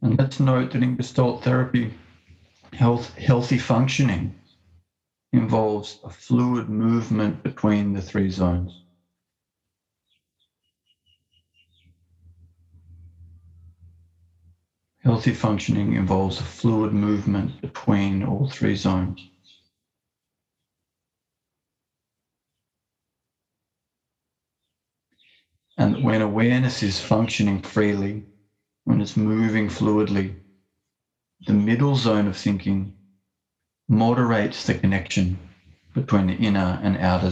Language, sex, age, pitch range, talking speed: English, male, 40-59, 90-110 Hz, 80 wpm